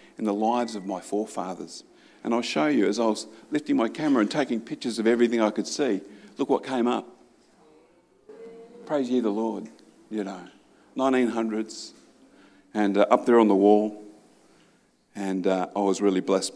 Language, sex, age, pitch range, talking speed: English, male, 50-69, 105-125 Hz, 175 wpm